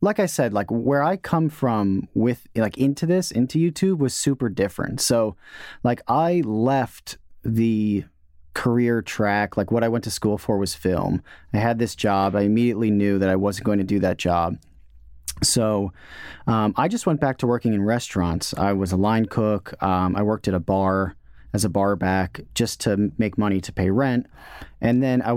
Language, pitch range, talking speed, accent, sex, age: English, 100-130 Hz, 195 wpm, American, male, 30-49